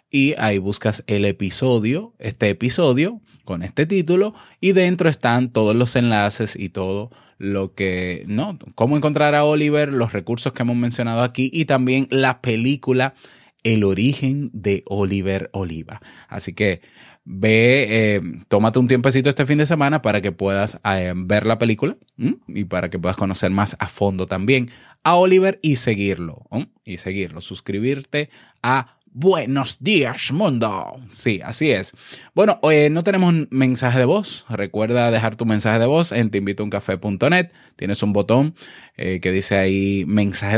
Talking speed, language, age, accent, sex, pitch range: 160 wpm, Spanish, 20-39, Venezuelan, male, 100-140 Hz